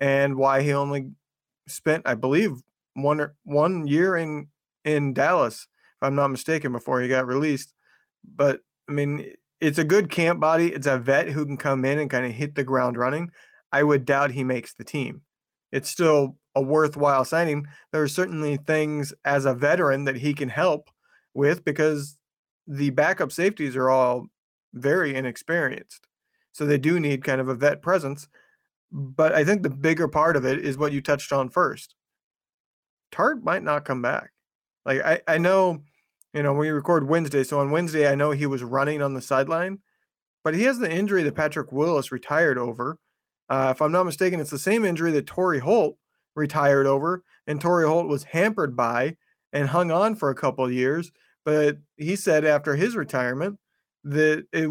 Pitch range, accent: 135-160 Hz, American